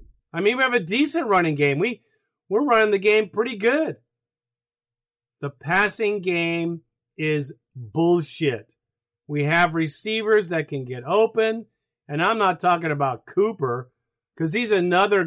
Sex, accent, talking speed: male, American, 145 wpm